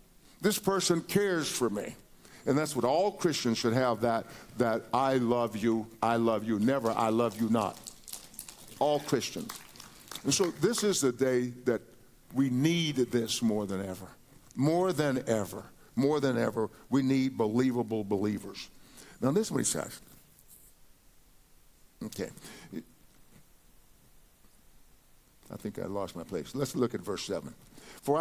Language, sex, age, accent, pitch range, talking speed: English, male, 50-69, American, 110-140 Hz, 145 wpm